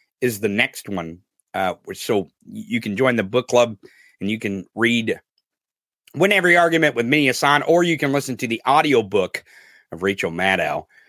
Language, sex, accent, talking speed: English, male, American, 175 wpm